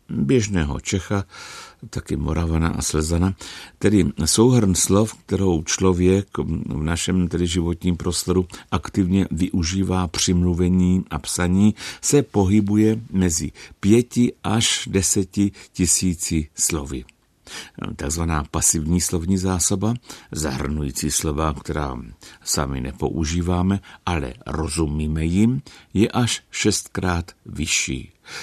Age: 60-79